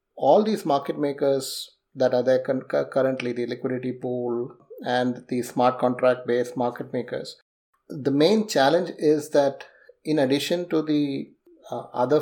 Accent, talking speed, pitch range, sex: Indian, 140 wpm, 125-150 Hz, male